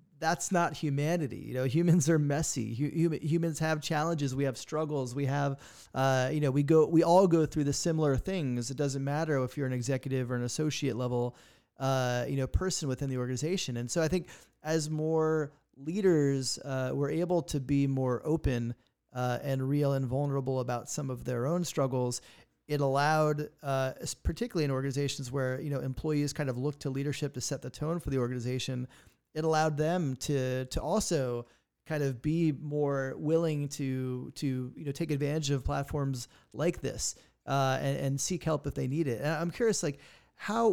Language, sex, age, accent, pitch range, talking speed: English, male, 30-49, American, 130-155 Hz, 190 wpm